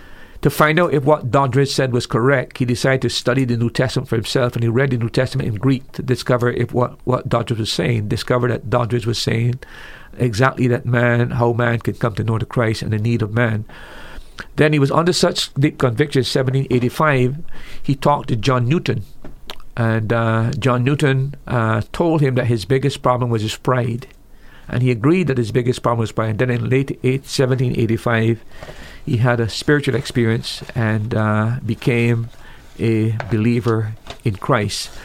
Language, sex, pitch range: English, male, 115-135 Hz